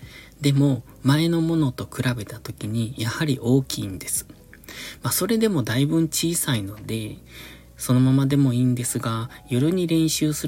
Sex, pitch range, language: male, 110-145 Hz, Japanese